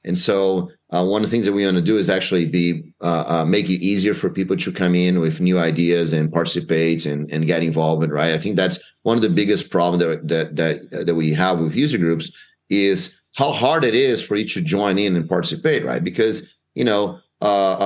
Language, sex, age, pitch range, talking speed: English, male, 30-49, 90-115 Hz, 240 wpm